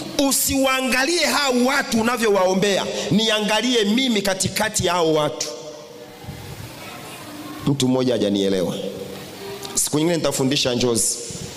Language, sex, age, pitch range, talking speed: Swahili, male, 40-59, 145-210 Hz, 85 wpm